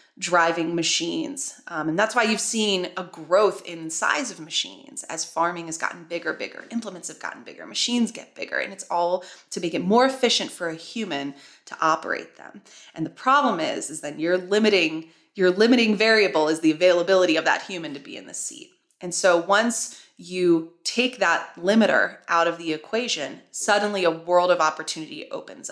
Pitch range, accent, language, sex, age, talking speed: 170-220 Hz, American, English, female, 20-39, 180 wpm